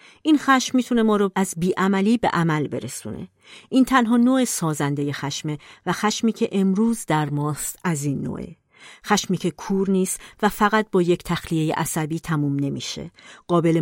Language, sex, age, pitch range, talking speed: Persian, female, 40-59, 160-200 Hz, 160 wpm